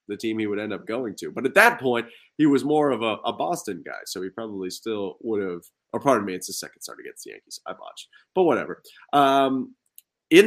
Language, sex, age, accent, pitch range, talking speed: English, male, 30-49, American, 120-190 Hz, 240 wpm